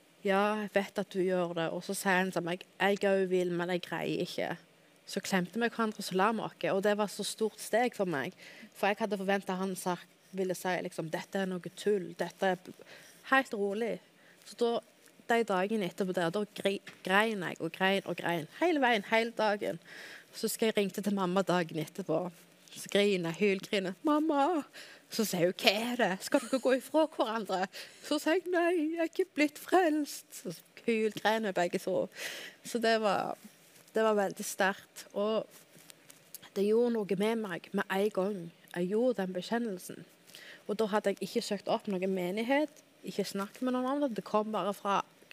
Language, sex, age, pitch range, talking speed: English, female, 20-39, 185-225 Hz, 195 wpm